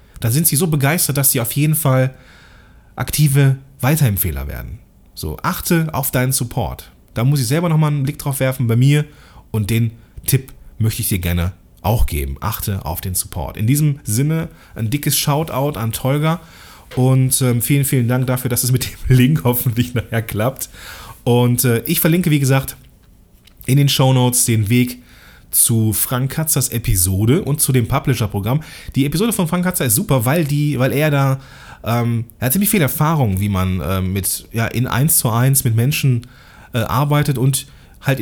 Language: German